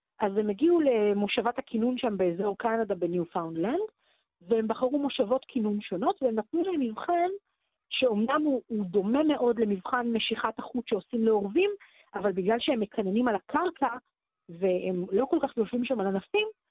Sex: female